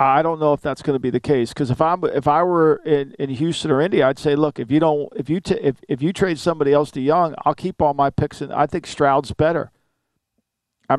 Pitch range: 145-195 Hz